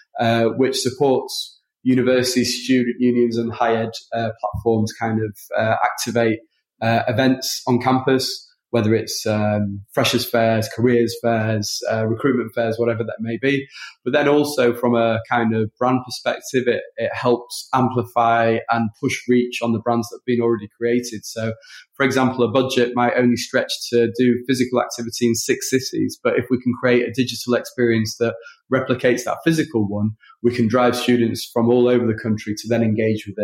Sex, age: male, 20-39